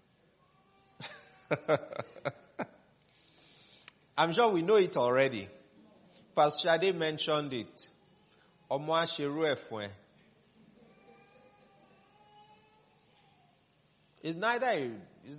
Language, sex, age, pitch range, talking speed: English, male, 30-49, 115-175 Hz, 45 wpm